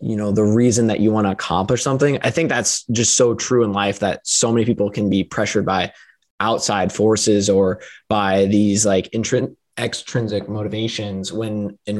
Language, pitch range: English, 105-120 Hz